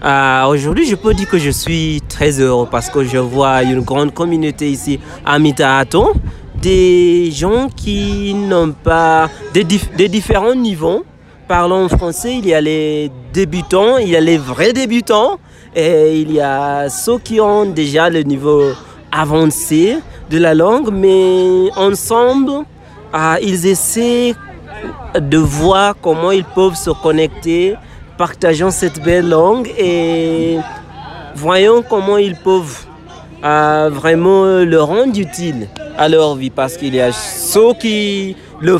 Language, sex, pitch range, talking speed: French, male, 150-200 Hz, 145 wpm